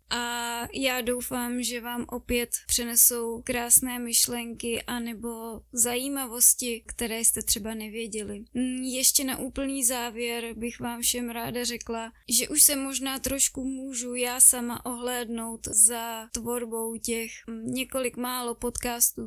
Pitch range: 225-245 Hz